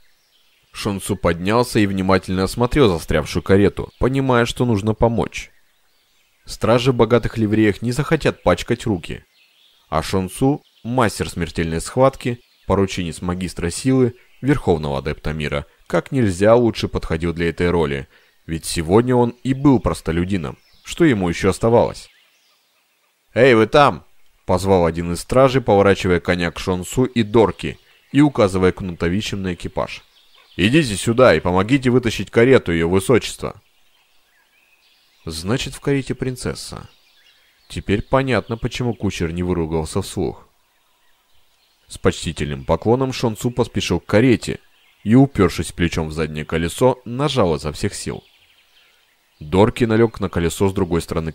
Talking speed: 125 wpm